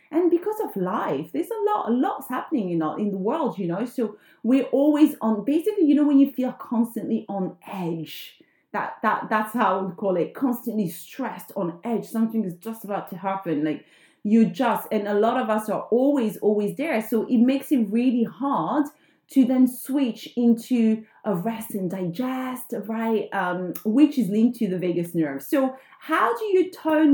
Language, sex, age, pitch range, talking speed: English, female, 30-49, 190-260 Hz, 190 wpm